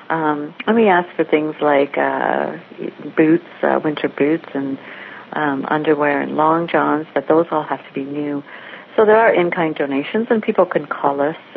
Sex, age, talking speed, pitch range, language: female, 50-69, 180 wpm, 145-175 Hz, English